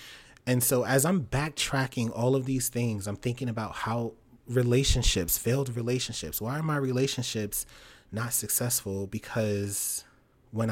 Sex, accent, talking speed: male, American, 135 wpm